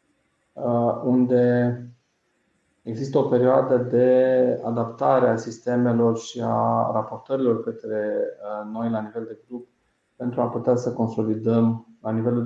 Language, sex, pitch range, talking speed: Romanian, male, 110-125 Hz, 115 wpm